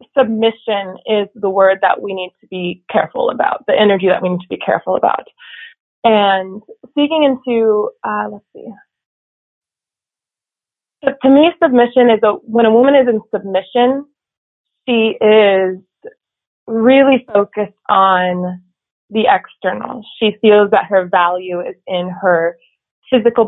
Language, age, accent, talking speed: English, 20-39, American, 135 wpm